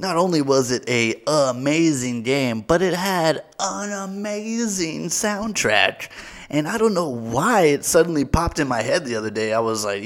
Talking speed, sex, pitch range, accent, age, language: 180 wpm, male, 120-185 Hz, American, 30-49, English